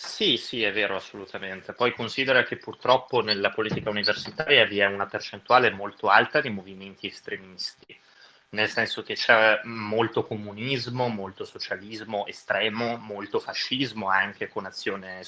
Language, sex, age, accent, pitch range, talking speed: Italian, male, 20-39, native, 100-120 Hz, 135 wpm